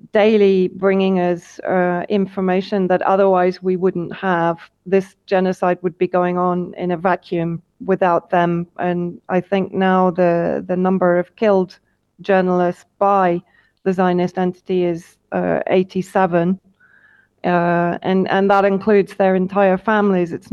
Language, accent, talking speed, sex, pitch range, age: English, British, 135 wpm, female, 180-200 Hz, 30-49